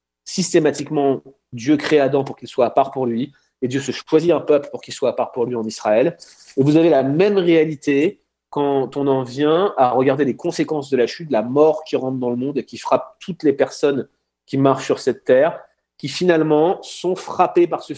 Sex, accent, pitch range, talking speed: male, French, 130-170 Hz, 225 wpm